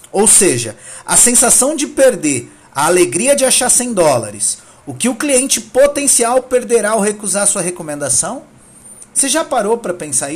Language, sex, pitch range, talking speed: Portuguese, male, 170-235 Hz, 155 wpm